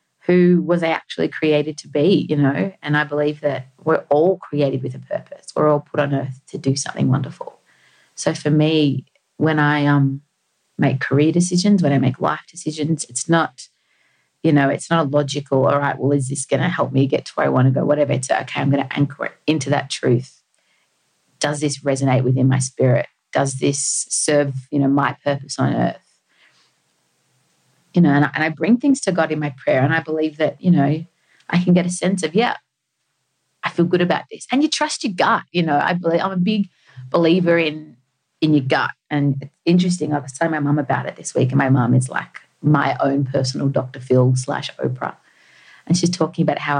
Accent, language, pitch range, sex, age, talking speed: Australian, English, 140-165 Hz, female, 30-49, 215 wpm